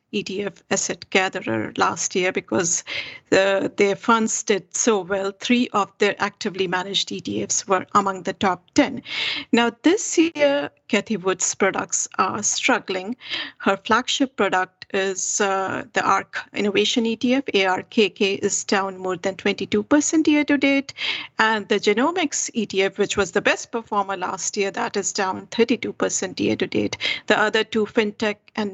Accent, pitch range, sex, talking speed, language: Indian, 195-240 Hz, female, 140 wpm, English